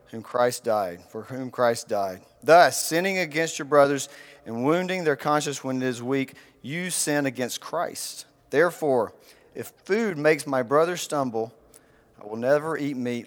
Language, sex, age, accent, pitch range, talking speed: English, male, 40-59, American, 125-155 Hz, 165 wpm